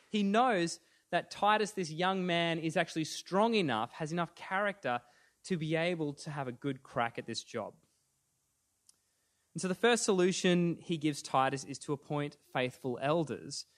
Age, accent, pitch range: 20-39, Australian, 120-170 Hz